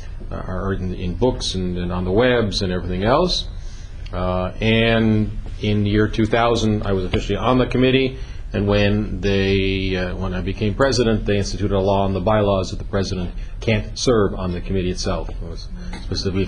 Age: 40-59